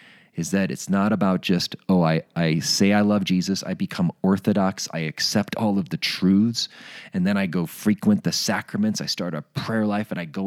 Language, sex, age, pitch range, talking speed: English, male, 30-49, 100-165 Hz, 210 wpm